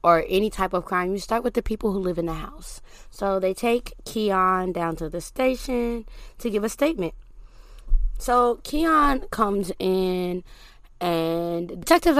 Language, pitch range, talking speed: English, 175-240 Hz, 160 wpm